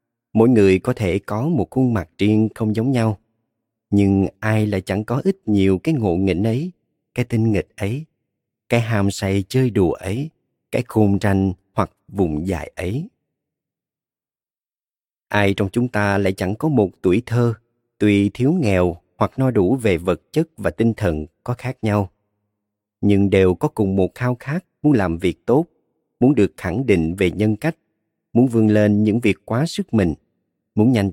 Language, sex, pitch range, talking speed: Vietnamese, male, 95-120 Hz, 180 wpm